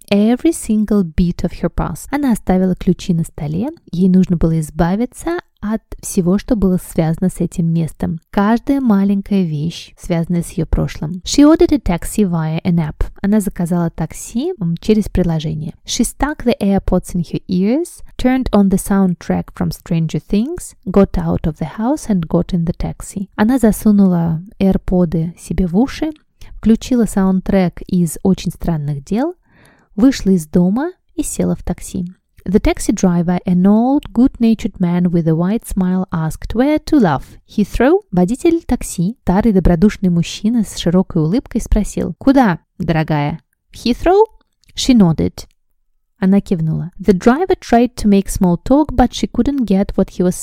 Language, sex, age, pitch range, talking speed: Russian, female, 20-39, 175-230 Hz, 125 wpm